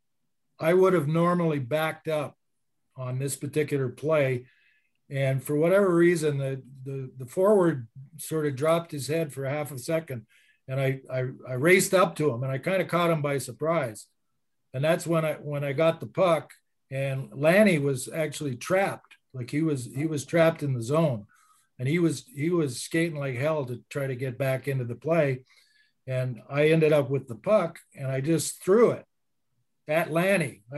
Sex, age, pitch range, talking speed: male, 50-69, 135-165 Hz, 190 wpm